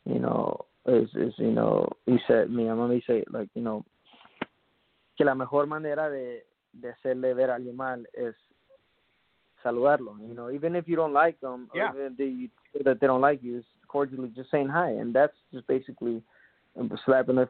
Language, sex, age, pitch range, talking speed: English, male, 20-39, 125-155 Hz, 180 wpm